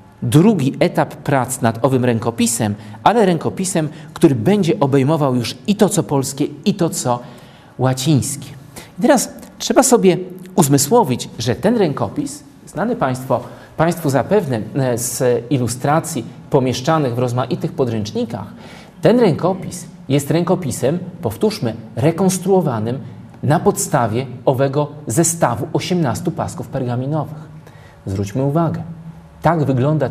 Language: Polish